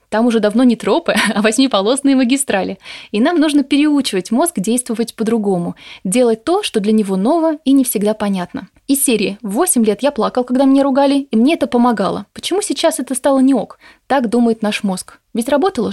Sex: female